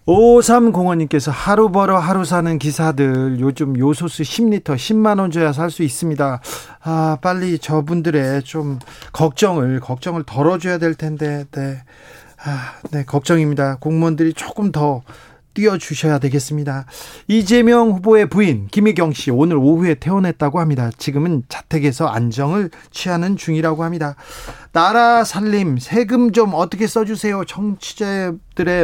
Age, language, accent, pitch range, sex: 40-59, Korean, native, 145-190 Hz, male